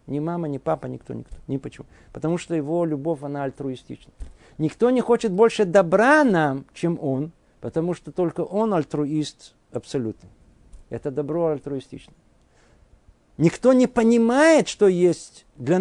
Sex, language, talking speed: male, Russian, 140 wpm